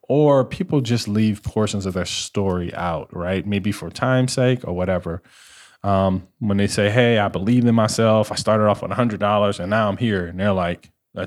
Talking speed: 200 wpm